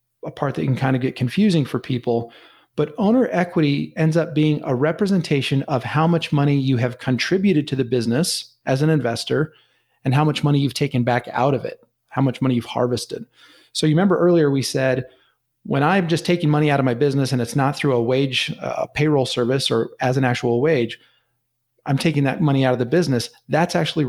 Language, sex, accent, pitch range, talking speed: English, male, American, 125-160 Hz, 210 wpm